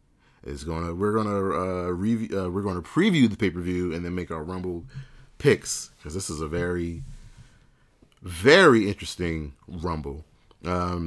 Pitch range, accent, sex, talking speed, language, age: 85-100 Hz, American, male, 165 wpm, English, 30-49